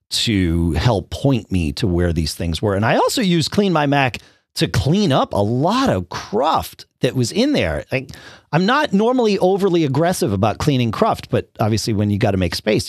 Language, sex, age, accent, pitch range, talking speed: English, male, 40-59, American, 95-160 Hz, 205 wpm